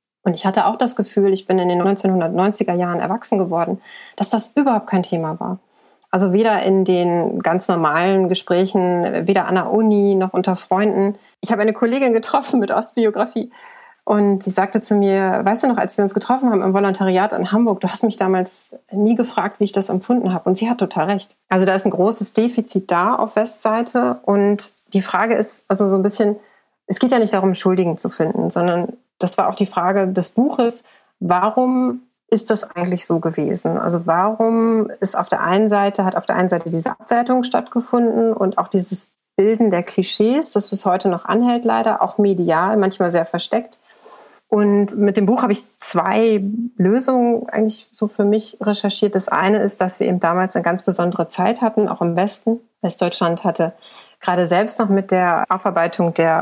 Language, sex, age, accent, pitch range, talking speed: German, female, 30-49, German, 185-220 Hz, 195 wpm